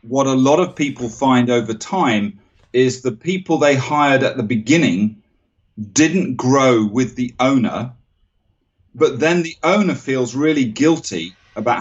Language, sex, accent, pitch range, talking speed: English, male, British, 105-140 Hz, 145 wpm